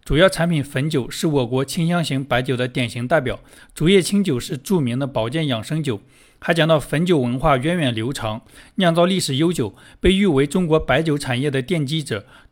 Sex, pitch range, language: male, 130-165 Hz, Chinese